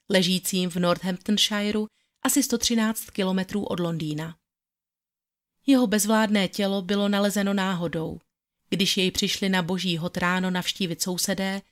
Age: 30-49